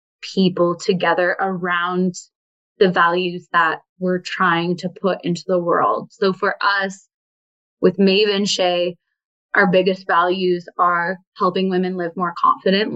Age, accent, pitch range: 20-39, American, 175-190 Hz